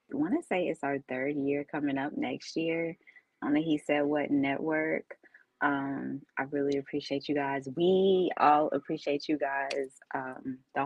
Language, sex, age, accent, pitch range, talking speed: English, female, 20-39, American, 140-170 Hz, 165 wpm